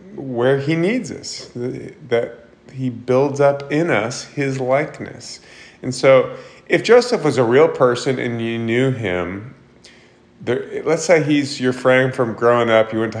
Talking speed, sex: 165 wpm, male